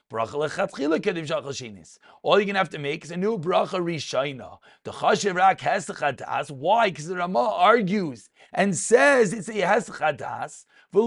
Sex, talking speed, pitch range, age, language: male, 110 wpm, 170-220 Hz, 40-59, English